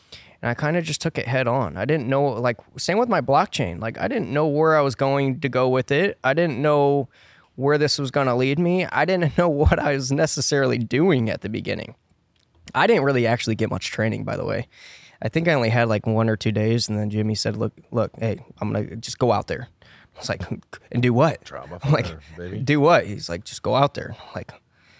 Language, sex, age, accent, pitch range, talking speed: English, male, 20-39, American, 115-140 Hz, 240 wpm